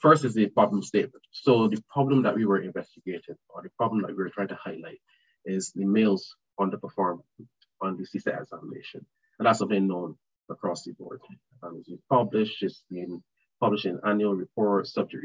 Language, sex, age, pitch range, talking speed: English, male, 20-39, 100-115 Hz, 180 wpm